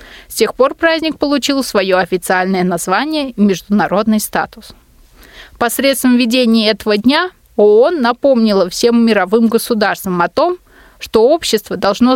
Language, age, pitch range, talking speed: Russian, 20-39, 205-260 Hz, 125 wpm